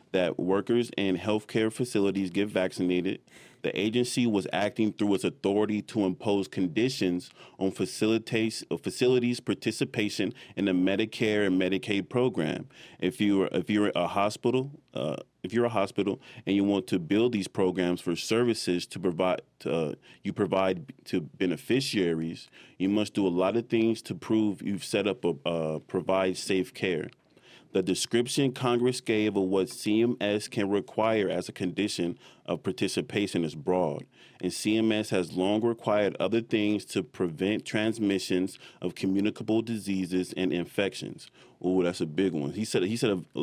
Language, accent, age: English, American, 30-49